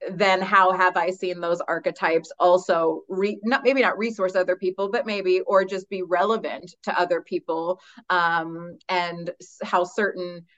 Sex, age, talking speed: female, 30-49, 160 wpm